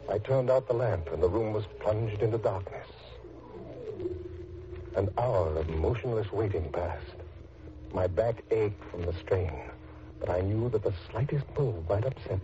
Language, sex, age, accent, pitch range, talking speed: English, male, 60-79, American, 85-135 Hz, 160 wpm